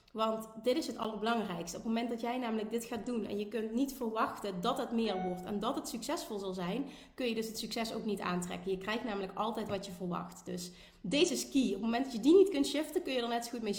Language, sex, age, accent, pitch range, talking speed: Dutch, female, 30-49, Dutch, 205-255 Hz, 280 wpm